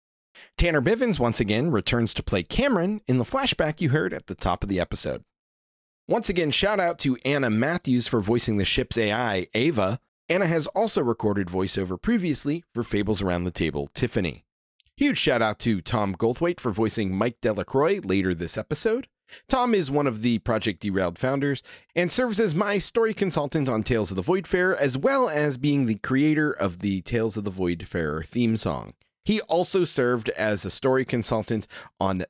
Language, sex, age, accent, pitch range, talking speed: English, male, 40-59, American, 105-165 Hz, 180 wpm